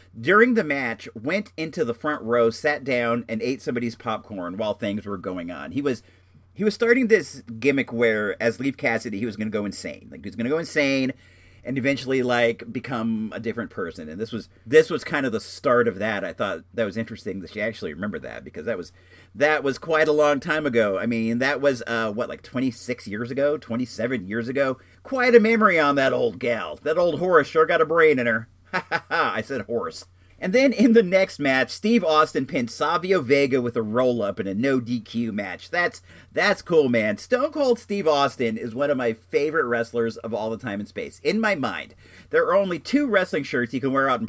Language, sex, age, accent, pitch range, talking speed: English, male, 40-59, American, 115-155 Hz, 225 wpm